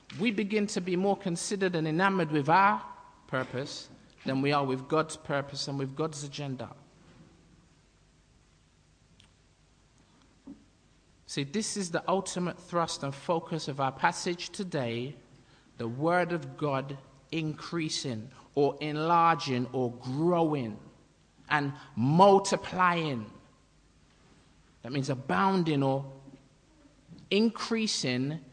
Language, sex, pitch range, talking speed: English, male, 135-175 Hz, 105 wpm